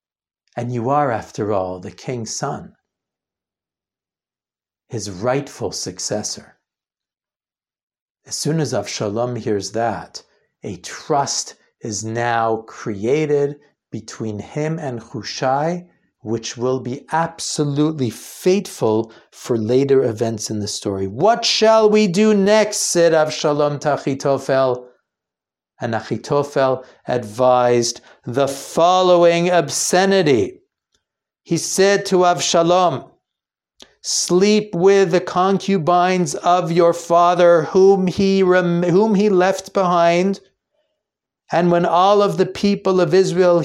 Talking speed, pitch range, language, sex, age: 105 wpm, 125-180 Hz, English, male, 60-79